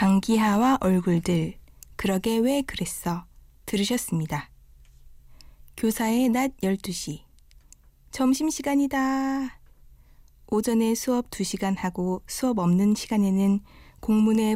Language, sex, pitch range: Korean, female, 180-245 Hz